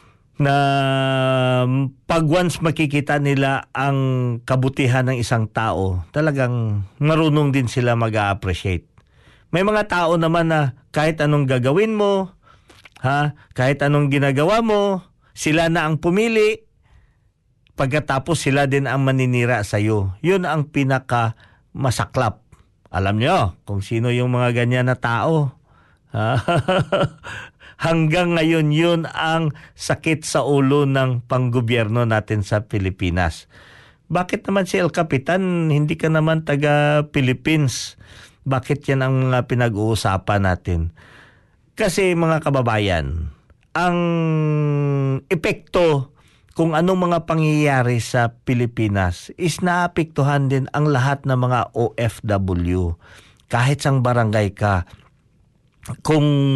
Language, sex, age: Filipino, male, 50-69